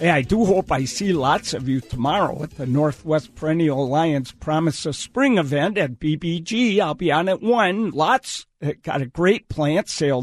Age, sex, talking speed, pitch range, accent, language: 50-69, male, 180 wpm, 140-180 Hz, American, English